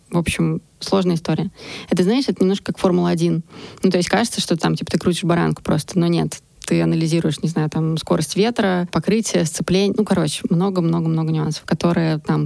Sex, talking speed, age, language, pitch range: female, 185 wpm, 20-39, Russian, 170-195 Hz